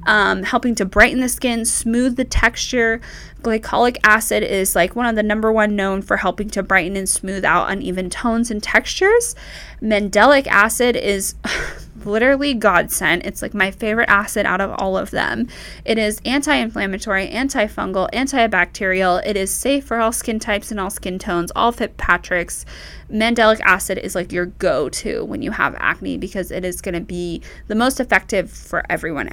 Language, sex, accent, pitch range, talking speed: English, female, American, 190-240 Hz, 170 wpm